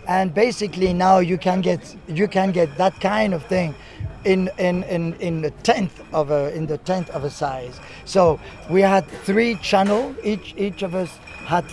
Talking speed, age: 190 wpm, 50-69